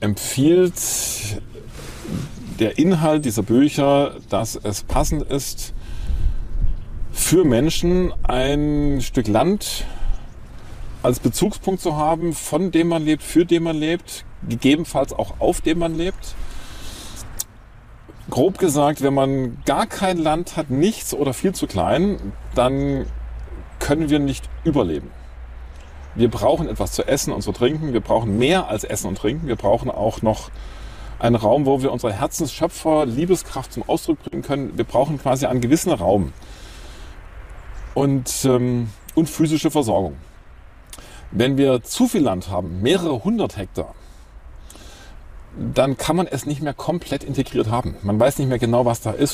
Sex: male